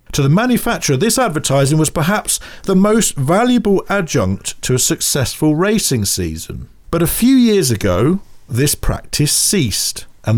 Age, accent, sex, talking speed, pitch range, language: 50-69, British, male, 145 wpm, 115-165 Hz, English